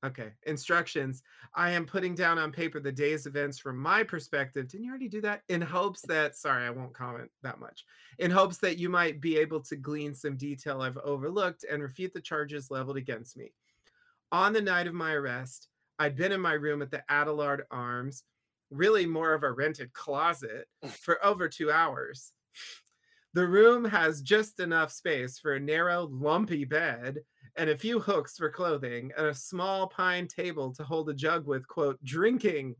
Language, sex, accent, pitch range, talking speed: English, male, American, 140-180 Hz, 185 wpm